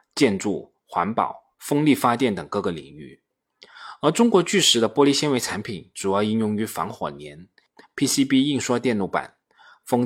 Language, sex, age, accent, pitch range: Chinese, male, 20-39, native, 110-150 Hz